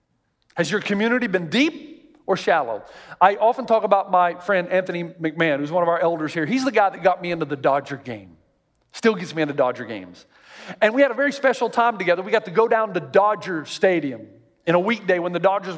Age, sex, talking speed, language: 50-69, male, 225 wpm, English